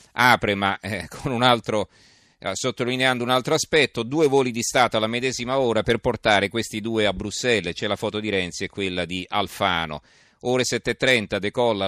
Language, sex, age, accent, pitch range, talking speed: Italian, male, 40-59, native, 95-115 Hz, 155 wpm